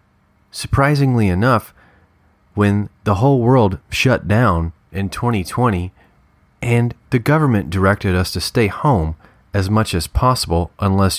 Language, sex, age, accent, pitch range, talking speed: English, male, 30-49, American, 85-115 Hz, 125 wpm